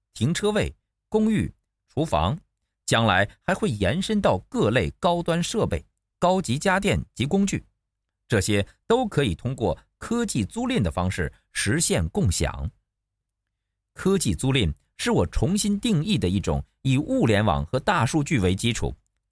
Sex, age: male, 50-69